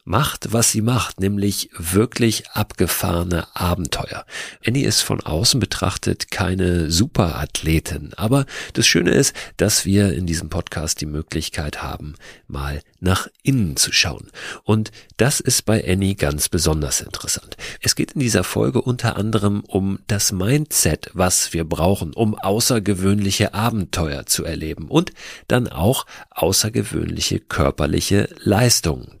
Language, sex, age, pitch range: German, male, 50-69, 85-110 Hz